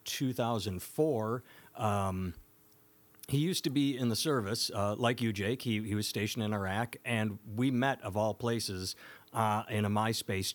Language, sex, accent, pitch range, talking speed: English, male, American, 105-130 Hz, 165 wpm